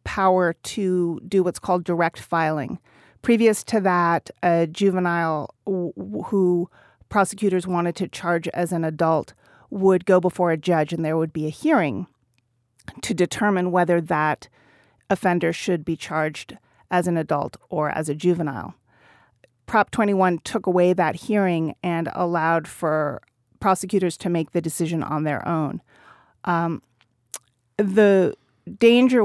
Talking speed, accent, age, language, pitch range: 135 wpm, American, 40-59, English, 160-195 Hz